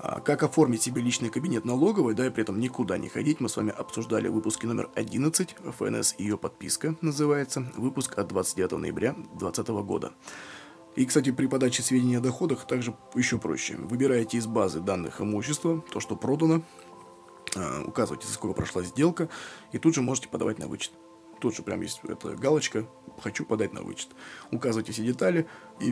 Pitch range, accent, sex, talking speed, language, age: 115-155 Hz, native, male, 170 wpm, Russian, 20-39